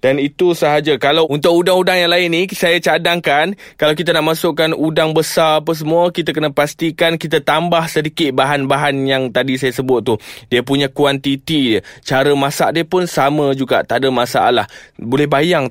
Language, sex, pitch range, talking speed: Malay, male, 135-185 Hz, 175 wpm